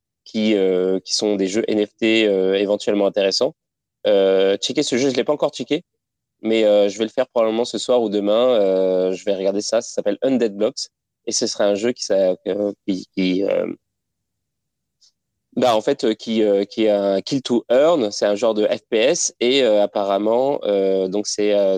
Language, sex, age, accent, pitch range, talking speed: French, male, 20-39, French, 100-115 Hz, 205 wpm